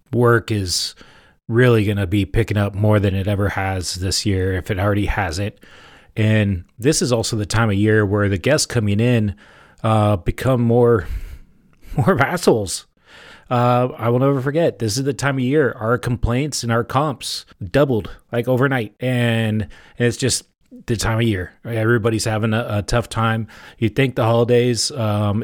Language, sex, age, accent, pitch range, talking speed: English, male, 30-49, American, 105-120 Hz, 180 wpm